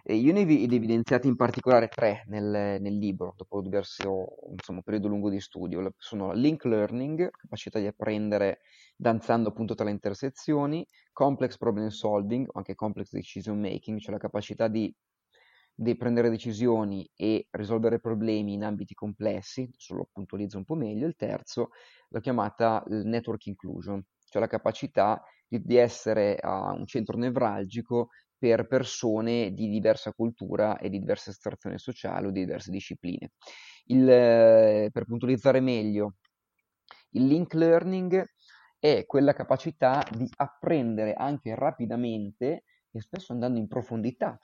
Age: 30-49